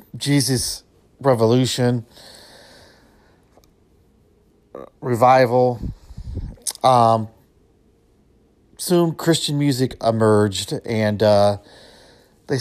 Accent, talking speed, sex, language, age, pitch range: American, 50 wpm, male, English, 50-69, 110-135 Hz